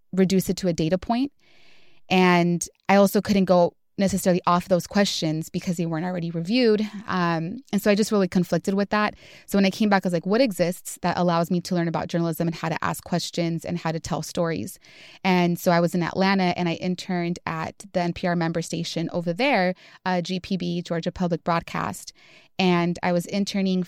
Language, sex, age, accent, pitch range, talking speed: English, female, 20-39, American, 170-195 Hz, 205 wpm